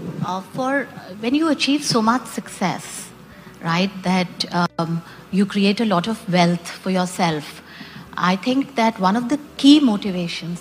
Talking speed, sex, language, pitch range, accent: 160 wpm, female, English, 185-235 Hz, Indian